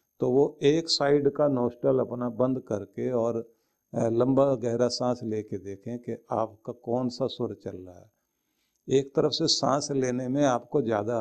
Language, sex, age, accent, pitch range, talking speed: Hindi, male, 50-69, native, 115-145 Hz, 165 wpm